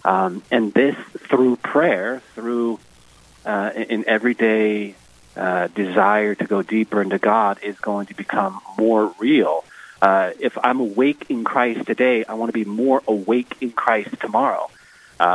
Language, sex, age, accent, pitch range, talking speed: English, male, 30-49, American, 100-115 Hz, 150 wpm